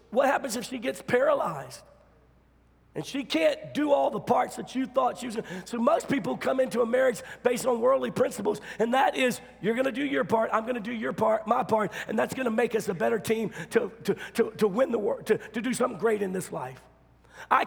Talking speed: 240 wpm